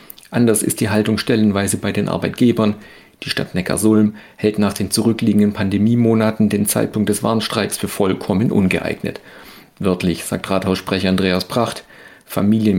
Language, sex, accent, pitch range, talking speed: German, male, German, 105-115 Hz, 135 wpm